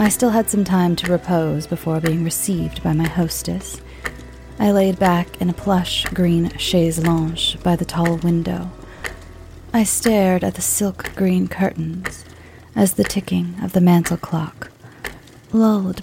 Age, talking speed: 30-49, 155 wpm